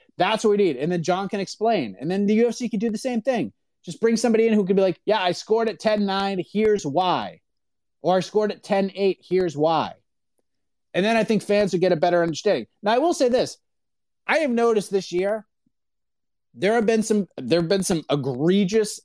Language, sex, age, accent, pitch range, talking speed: English, male, 30-49, American, 165-210 Hz, 215 wpm